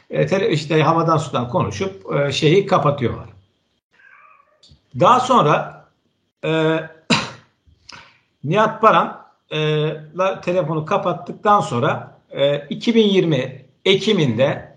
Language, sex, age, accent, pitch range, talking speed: Turkish, male, 60-79, native, 135-185 Hz, 75 wpm